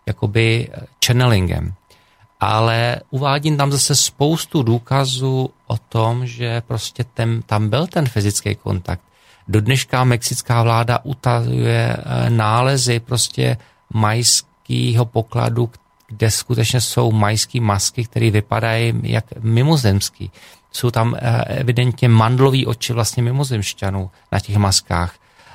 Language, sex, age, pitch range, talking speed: Slovak, male, 40-59, 110-130 Hz, 105 wpm